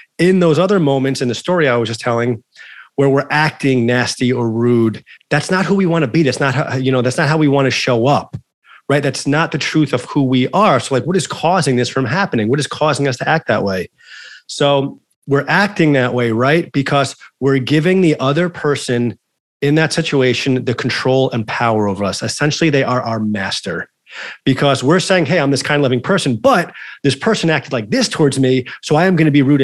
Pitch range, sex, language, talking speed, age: 125-155 Hz, male, English, 225 wpm, 30-49